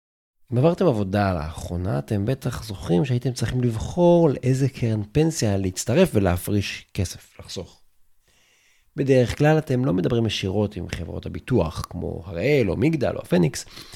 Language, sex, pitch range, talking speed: Hebrew, male, 95-125 Hz, 140 wpm